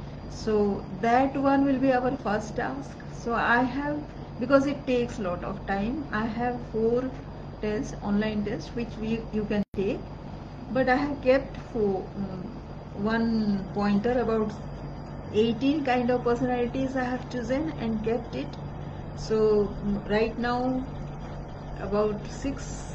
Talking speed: 135 wpm